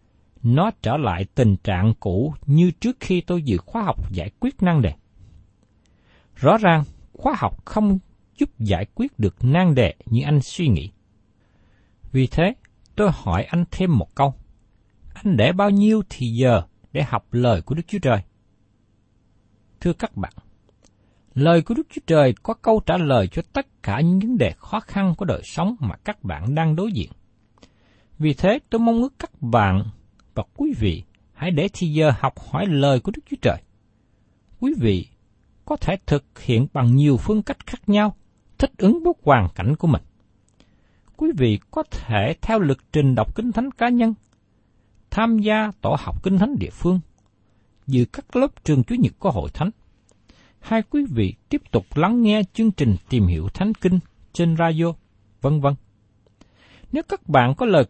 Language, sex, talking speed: Vietnamese, male, 180 wpm